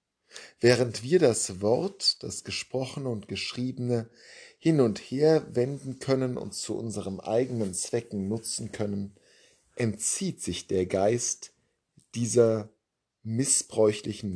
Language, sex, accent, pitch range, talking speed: German, male, German, 105-125 Hz, 110 wpm